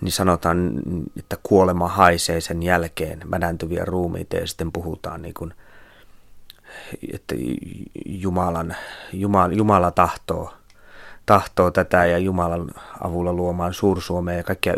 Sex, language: male, Finnish